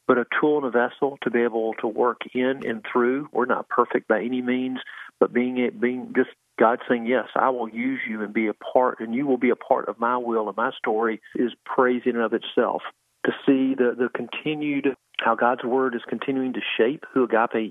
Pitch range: 115-130 Hz